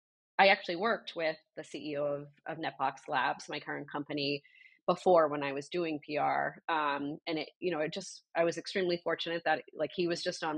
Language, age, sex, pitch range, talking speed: English, 30-49, female, 145-165 Hz, 205 wpm